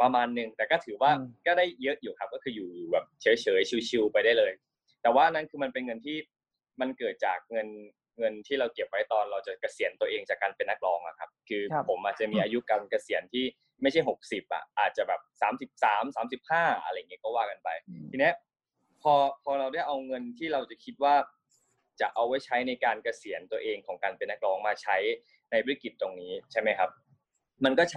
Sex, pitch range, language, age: male, 115-175 Hz, English, 20-39